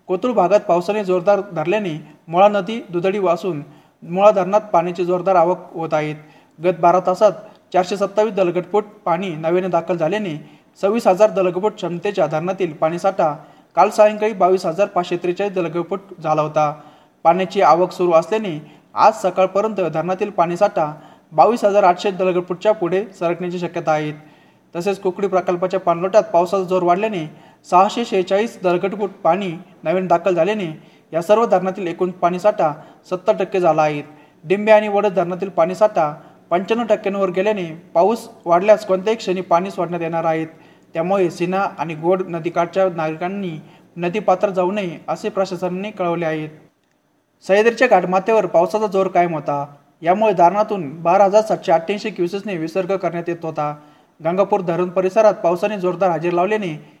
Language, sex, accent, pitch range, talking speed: Marathi, male, native, 170-200 Hz, 130 wpm